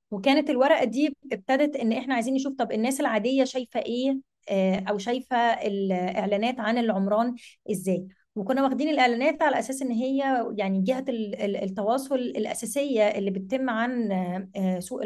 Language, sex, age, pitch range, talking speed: Arabic, female, 20-39, 200-250 Hz, 135 wpm